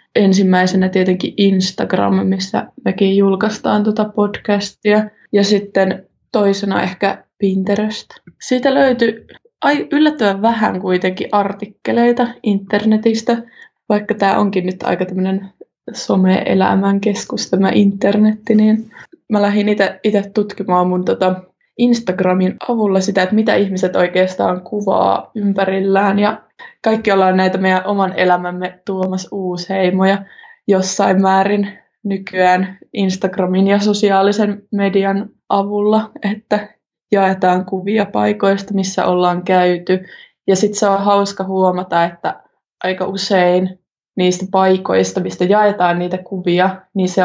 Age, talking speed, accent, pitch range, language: 20-39, 115 wpm, native, 185-210 Hz, Finnish